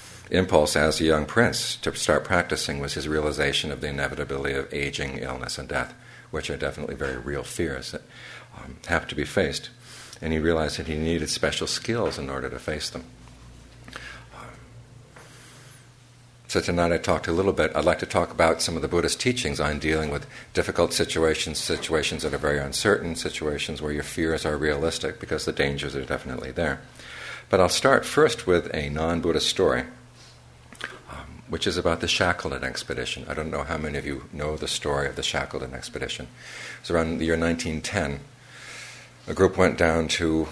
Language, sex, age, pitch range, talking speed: English, male, 50-69, 75-90 Hz, 180 wpm